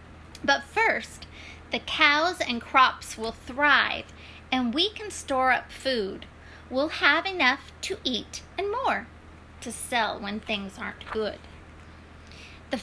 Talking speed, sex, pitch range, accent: 130 wpm, female, 195-275 Hz, American